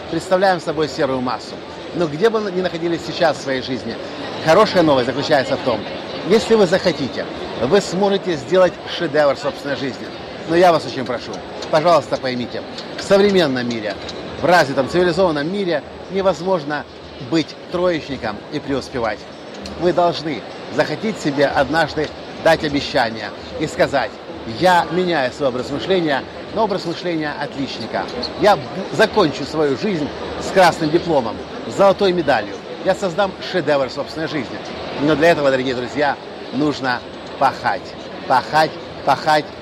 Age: 50-69